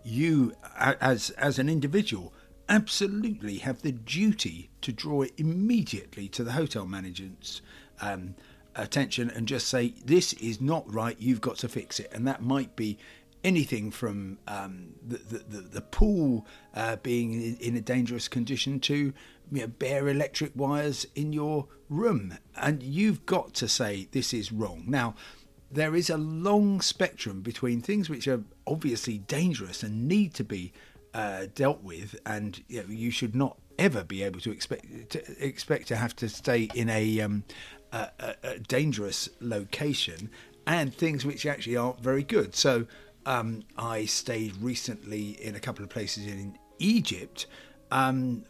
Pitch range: 105-140 Hz